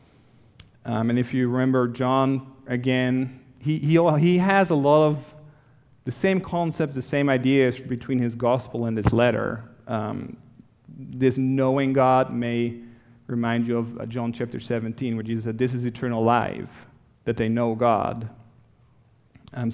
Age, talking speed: 30-49, 150 wpm